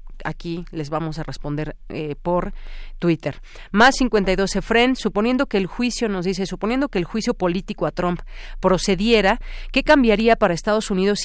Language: Spanish